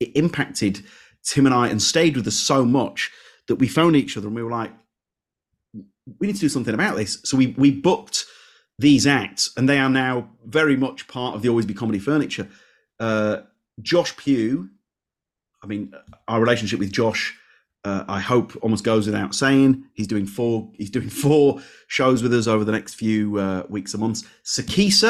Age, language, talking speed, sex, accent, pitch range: 30-49, English, 190 wpm, male, British, 105-135 Hz